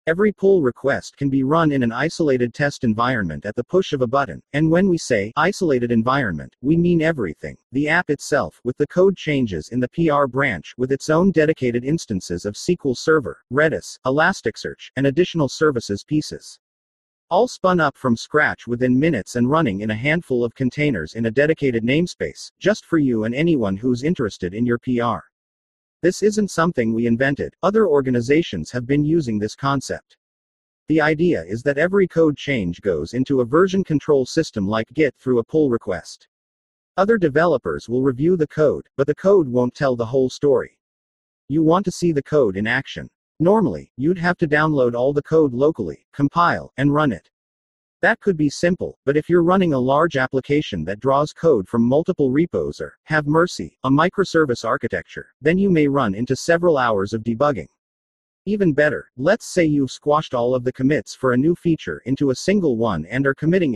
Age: 40-59